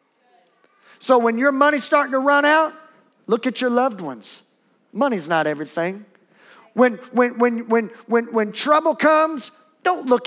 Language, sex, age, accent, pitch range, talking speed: English, male, 50-69, American, 175-265 Hz, 135 wpm